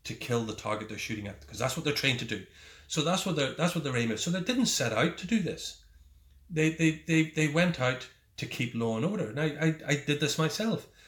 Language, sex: English, male